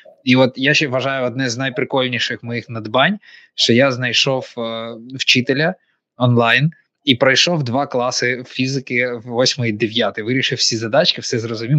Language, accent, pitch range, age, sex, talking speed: Ukrainian, native, 125-155 Hz, 20-39, male, 150 wpm